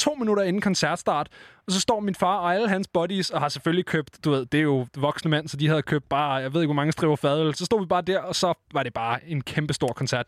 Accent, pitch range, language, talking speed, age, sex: native, 130-155 Hz, Danish, 285 wpm, 20-39, male